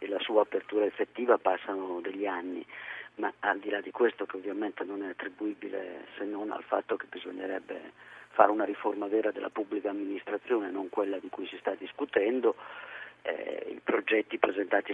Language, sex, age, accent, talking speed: Italian, male, 40-59, native, 175 wpm